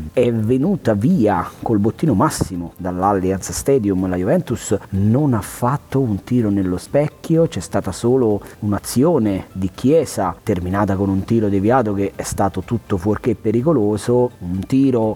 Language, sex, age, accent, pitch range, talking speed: Italian, male, 30-49, native, 95-125 Hz, 145 wpm